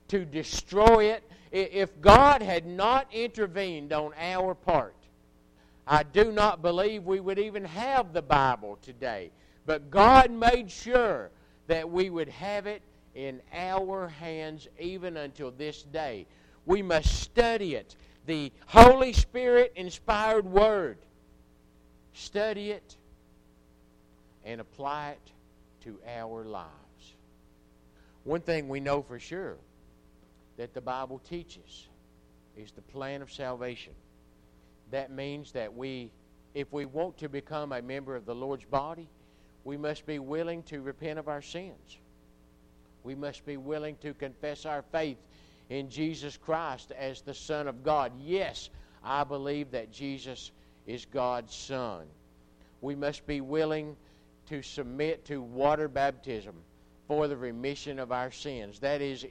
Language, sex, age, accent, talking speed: English, male, 50-69, American, 135 wpm